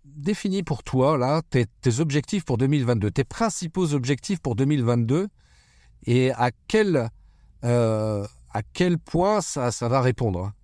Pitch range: 115-155 Hz